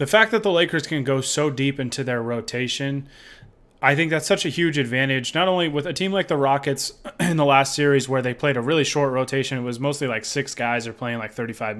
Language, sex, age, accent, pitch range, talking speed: English, male, 20-39, American, 120-145 Hz, 245 wpm